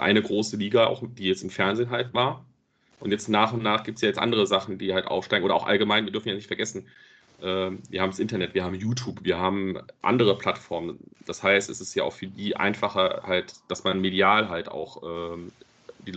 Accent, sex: German, male